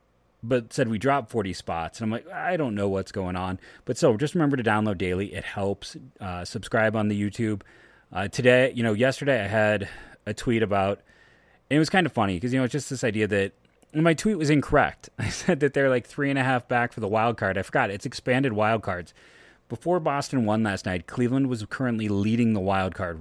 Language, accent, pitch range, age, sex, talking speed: English, American, 100-130 Hz, 30-49, male, 235 wpm